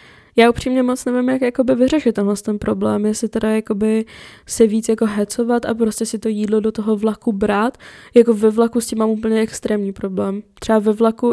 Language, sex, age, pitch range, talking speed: Czech, female, 20-39, 210-230 Hz, 190 wpm